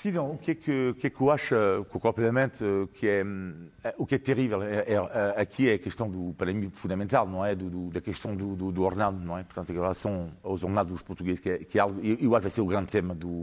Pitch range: 95-125 Hz